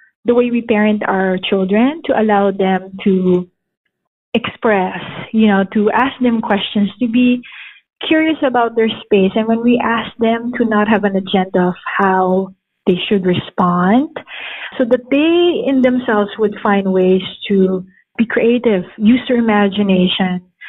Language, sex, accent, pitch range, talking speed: English, female, Filipino, 195-240 Hz, 150 wpm